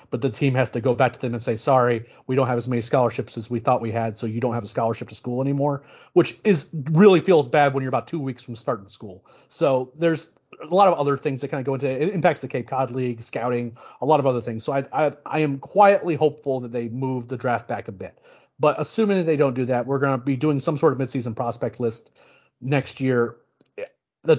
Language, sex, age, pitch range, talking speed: English, male, 40-59, 120-145 Hz, 260 wpm